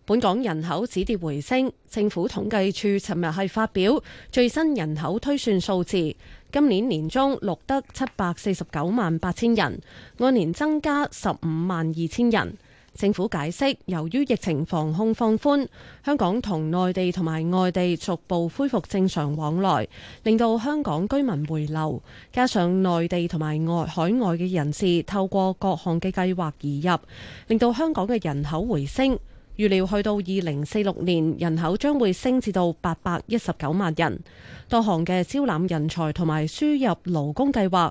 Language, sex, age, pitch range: Chinese, female, 20-39, 160-220 Hz